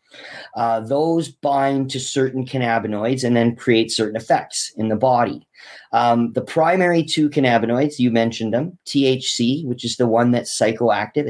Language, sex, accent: English, male, American